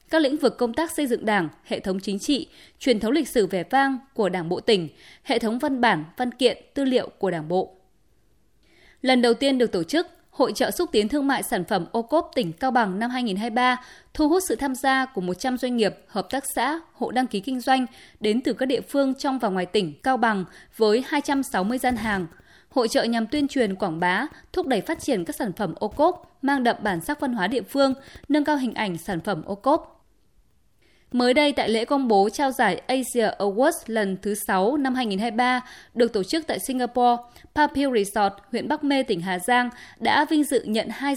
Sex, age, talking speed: female, 20-39, 215 wpm